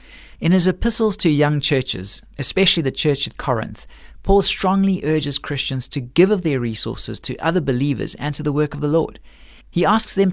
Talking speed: 190 wpm